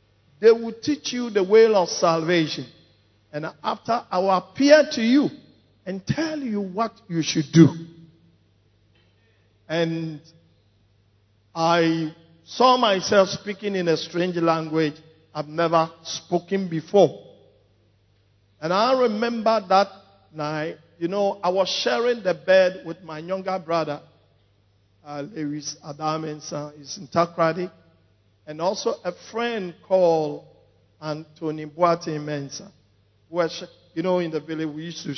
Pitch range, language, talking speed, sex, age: 125-190 Hz, English, 125 wpm, male, 50-69